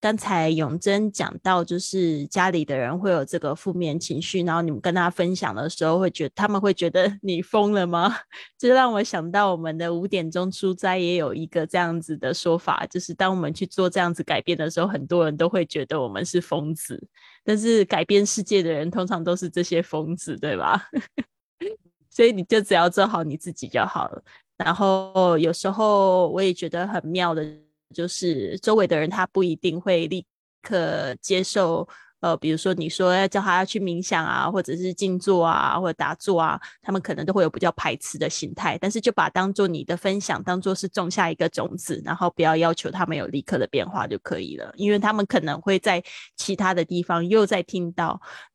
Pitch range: 165-190 Hz